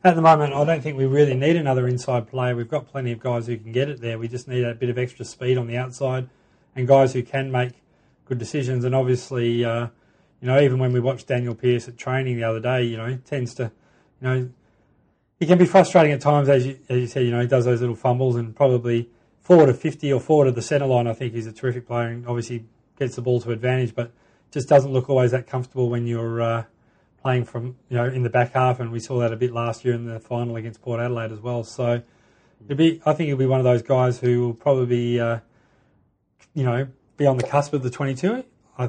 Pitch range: 120-130 Hz